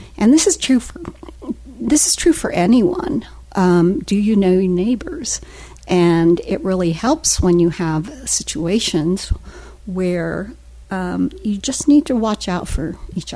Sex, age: female, 50-69